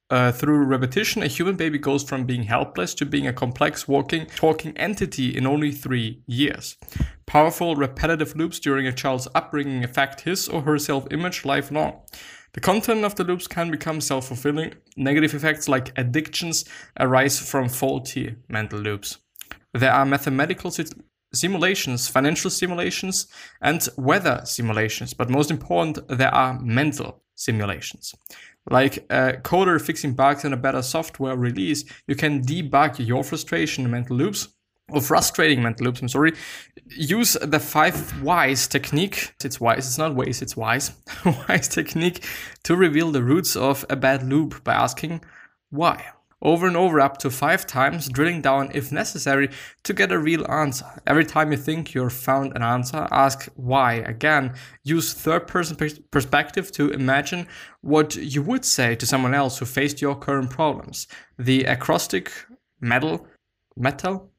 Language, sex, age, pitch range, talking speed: English, male, 20-39, 130-160 Hz, 155 wpm